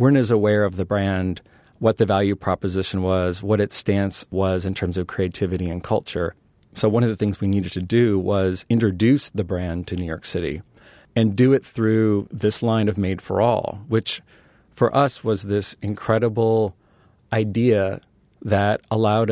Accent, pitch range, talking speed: American, 95-110 Hz, 170 wpm